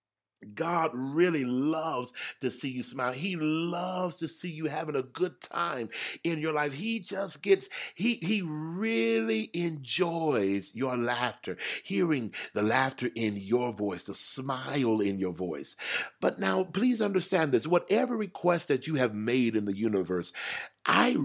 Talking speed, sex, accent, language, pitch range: 150 wpm, male, American, English, 115-175 Hz